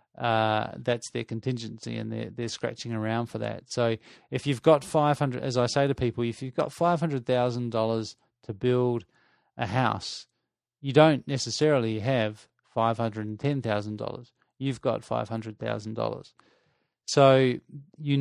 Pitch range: 115-140 Hz